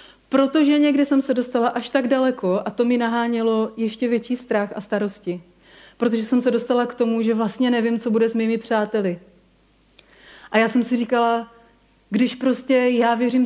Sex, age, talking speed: female, 40-59, 180 wpm